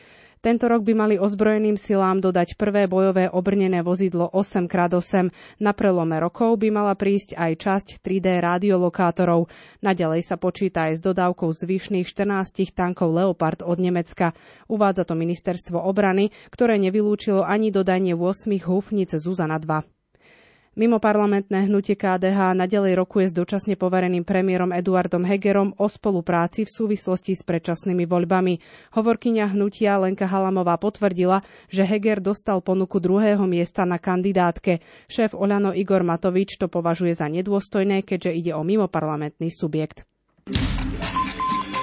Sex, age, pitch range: female, 30-49, 175-205 Hz